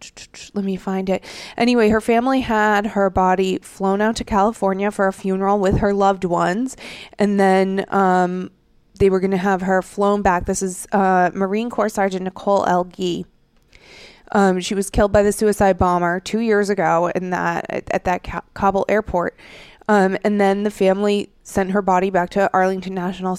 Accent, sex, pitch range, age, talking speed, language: American, female, 185-210 Hz, 20-39, 180 wpm, English